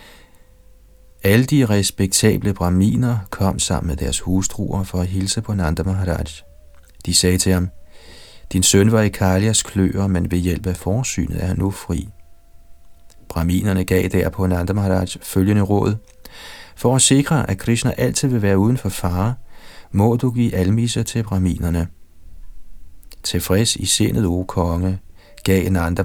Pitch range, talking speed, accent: 90-105 Hz, 150 wpm, native